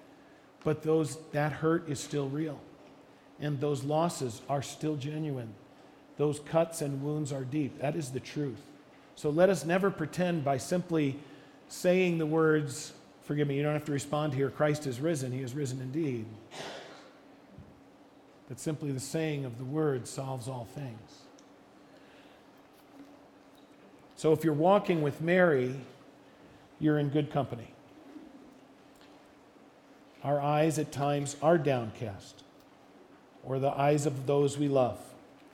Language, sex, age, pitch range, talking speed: English, male, 40-59, 135-160 Hz, 135 wpm